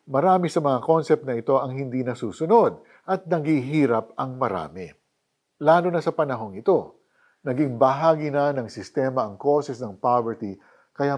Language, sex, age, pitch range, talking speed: Filipino, male, 50-69, 120-175 Hz, 150 wpm